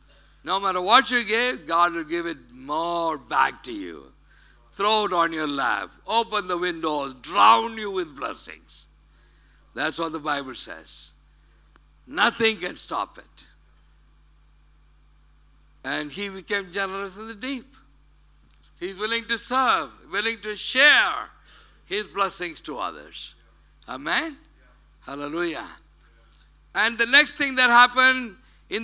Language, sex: English, male